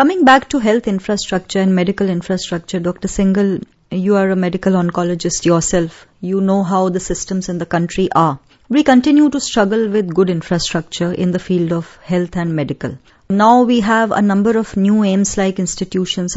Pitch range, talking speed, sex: 180-220 Hz, 175 wpm, female